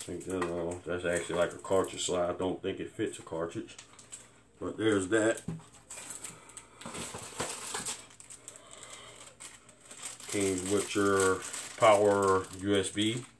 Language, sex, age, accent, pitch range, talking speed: English, male, 30-49, American, 95-105 Hz, 115 wpm